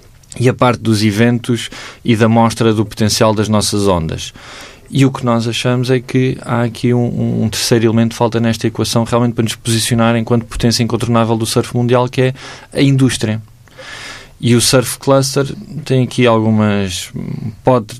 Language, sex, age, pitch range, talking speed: Portuguese, male, 20-39, 100-125 Hz, 170 wpm